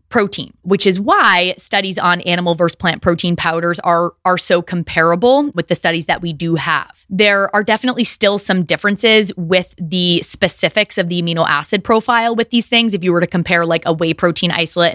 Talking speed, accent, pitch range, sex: 195 wpm, American, 165-200 Hz, female